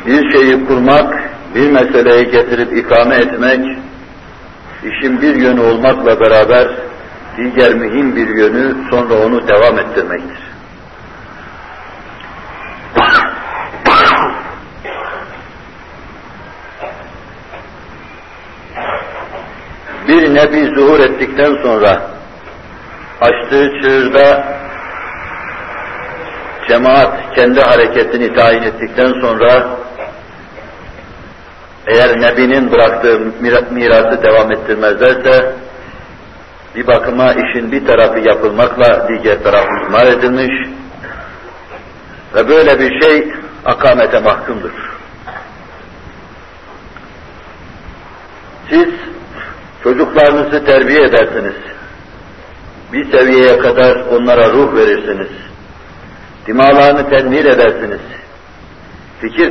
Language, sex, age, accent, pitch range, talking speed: Turkish, male, 60-79, native, 115-145 Hz, 70 wpm